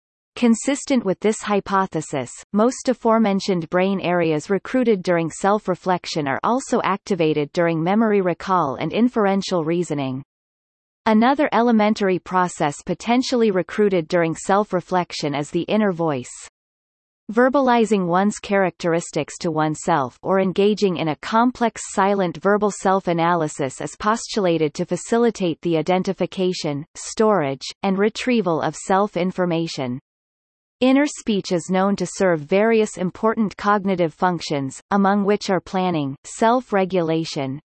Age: 30-49